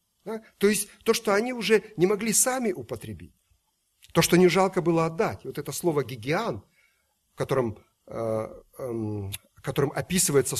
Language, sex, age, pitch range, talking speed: Russian, male, 50-69, 135-190 Hz, 130 wpm